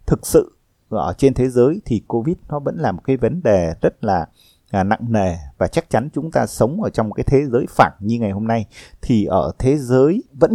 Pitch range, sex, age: 105-150 Hz, male, 20-39